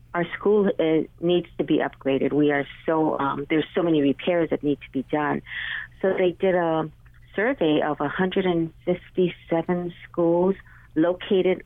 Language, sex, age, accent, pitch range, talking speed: English, female, 50-69, American, 140-165 Hz, 145 wpm